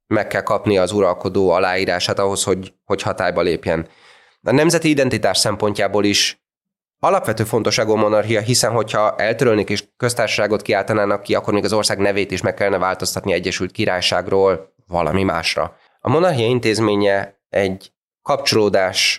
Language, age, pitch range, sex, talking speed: Hungarian, 20-39, 95-110 Hz, male, 140 wpm